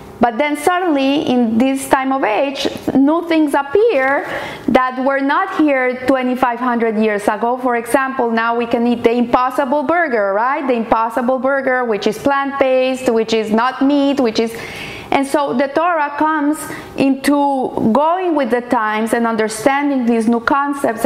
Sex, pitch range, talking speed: female, 225-280 Hz, 155 wpm